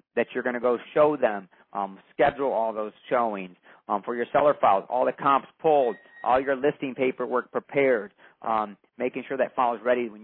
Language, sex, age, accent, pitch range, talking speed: English, male, 40-59, American, 110-140 Hz, 200 wpm